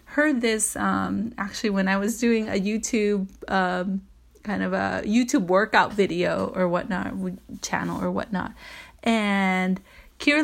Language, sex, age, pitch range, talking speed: English, female, 30-49, 195-245 Hz, 140 wpm